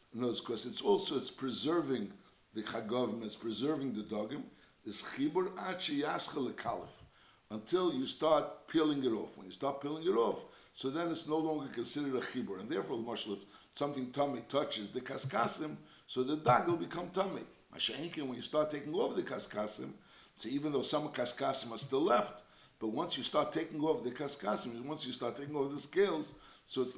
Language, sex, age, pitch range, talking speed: English, male, 60-79, 125-160 Hz, 190 wpm